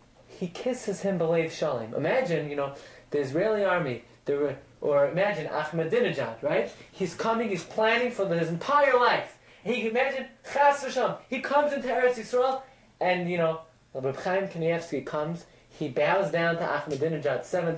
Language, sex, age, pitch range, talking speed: English, male, 20-39, 170-260 Hz, 150 wpm